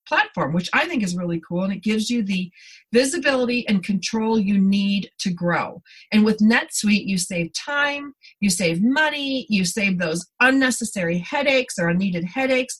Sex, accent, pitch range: female, American, 190-255 Hz